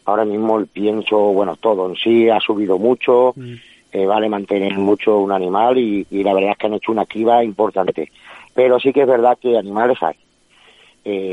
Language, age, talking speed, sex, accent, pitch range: Spanish, 50-69, 195 wpm, male, Spanish, 105-120 Hz